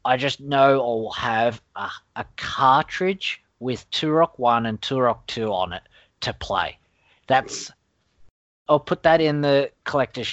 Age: 30-49